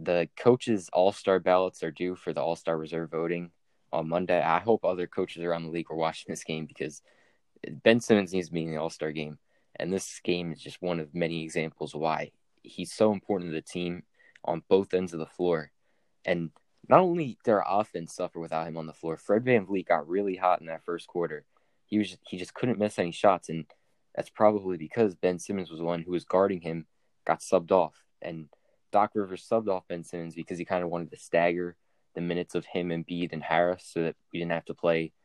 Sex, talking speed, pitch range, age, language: male, 225 wpm, 80-95 Hz, 20-39, English